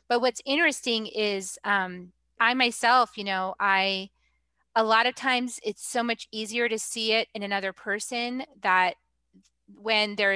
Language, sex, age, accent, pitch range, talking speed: English, female, 30-49, American, 190-235 Hz, 155 wpm